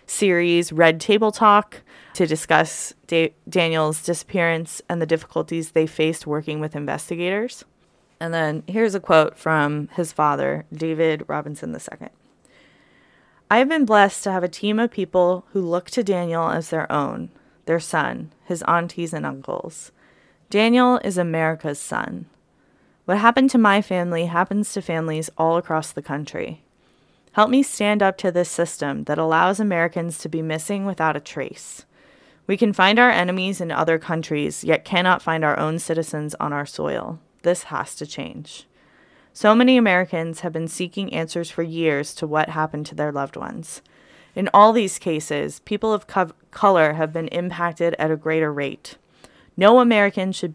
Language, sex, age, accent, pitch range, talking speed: English, female, 20-39, American, 160-190 Hz, 160 wpm